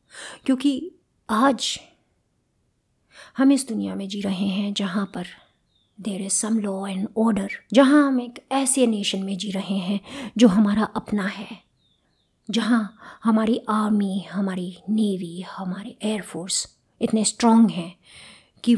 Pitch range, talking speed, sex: 185-220 Hz, 130 wpm, female